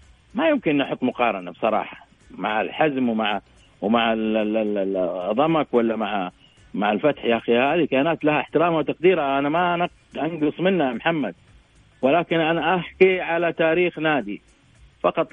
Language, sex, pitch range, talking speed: Arabic, male, 130-160 Hz, 130 wpm